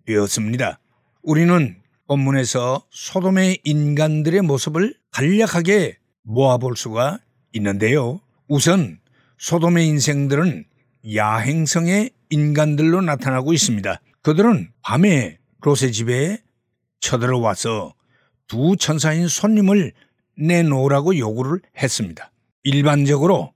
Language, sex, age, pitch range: Korean, male, 60-79, 125-185 Hz